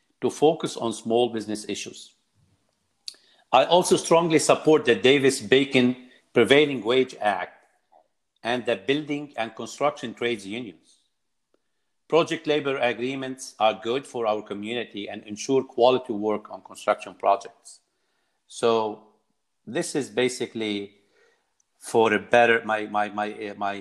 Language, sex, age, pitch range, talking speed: English, male, 50-69, 105-130 Hz, 120 wpm